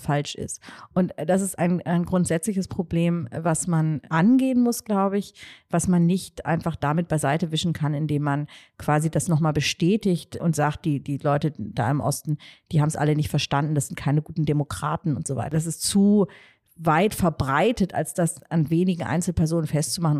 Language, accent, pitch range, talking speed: German, German, 155-195 Hz, 185 wpm